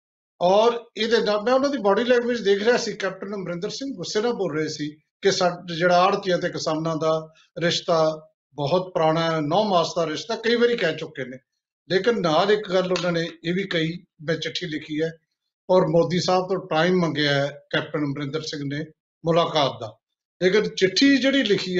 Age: 50-69